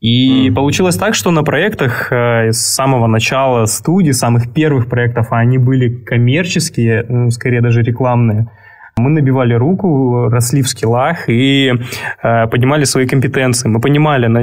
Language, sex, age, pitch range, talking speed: Russian, male, 20-39, 120-140 Hz, 130 wpm